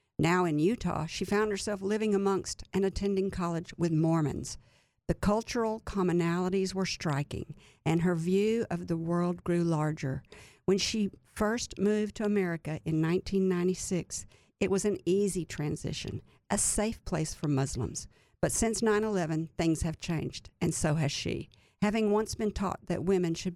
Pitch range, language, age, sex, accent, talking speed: 160-205 Hz, English, 50-69, female, American, 155 wpm